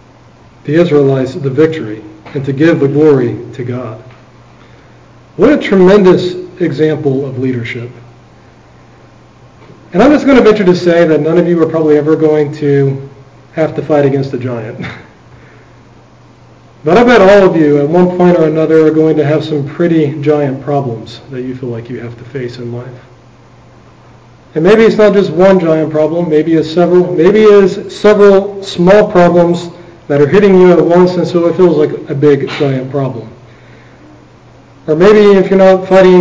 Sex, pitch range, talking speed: male, 135-180 Hz, 175 wpm